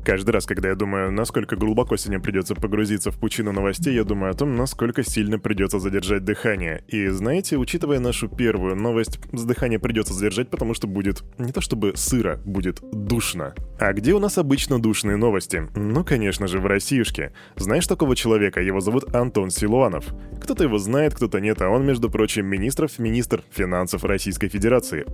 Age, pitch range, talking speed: 10-29, 105-130 Hz, 170 wpm